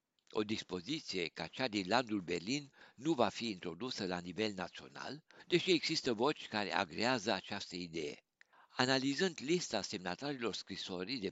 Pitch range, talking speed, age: 100-140 Hz, 140 wpm, 60-79